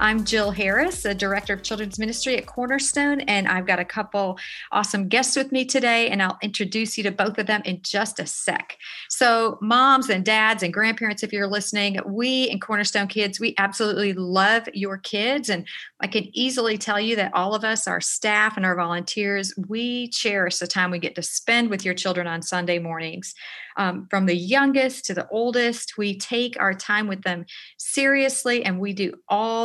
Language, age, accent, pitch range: English, 40-59, American, 185-230 Hz